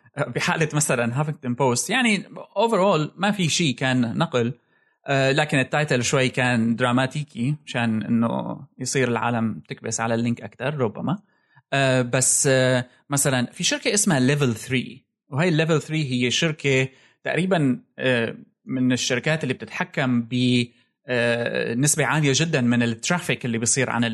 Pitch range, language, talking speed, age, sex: 120-150 Hz, Arabic, 120 wpm, 20-39, male